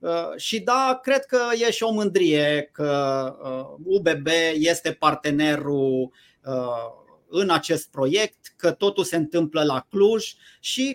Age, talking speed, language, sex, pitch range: 30-49, 120 wpm, Romanian, male, 145-190 Hz